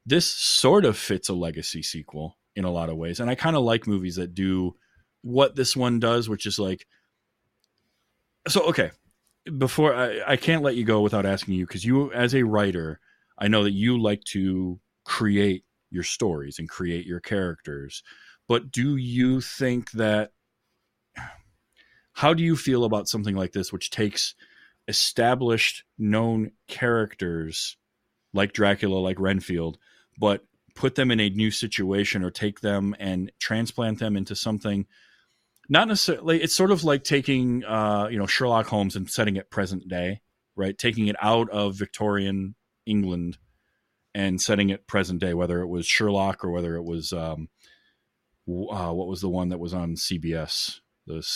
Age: 30-49